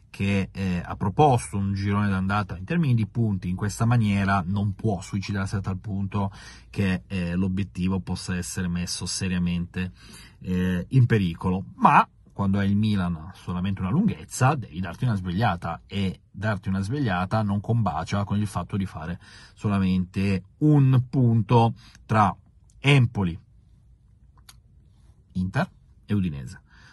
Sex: male